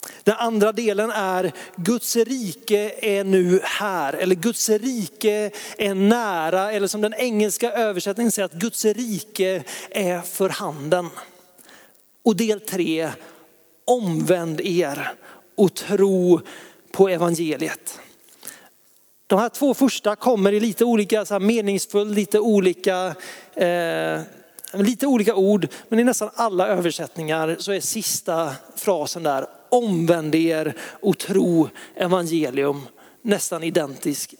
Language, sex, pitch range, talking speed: Swedish, male, 180-230 Hz, 115 wpm